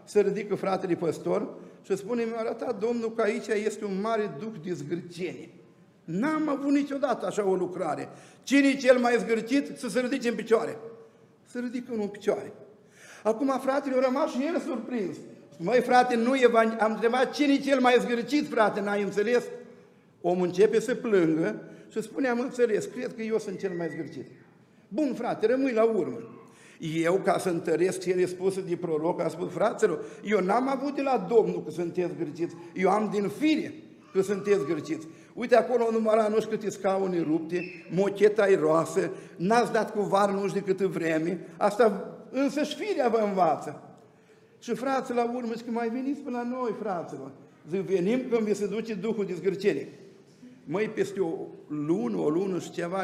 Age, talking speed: 50-69, 175 wpm